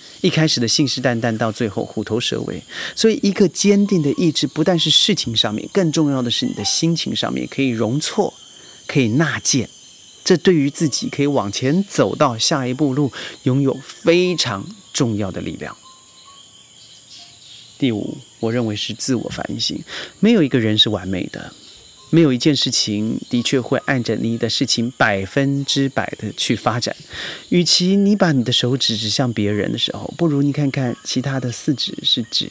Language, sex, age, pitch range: Chinese, male, 30-49, 115-150 Hz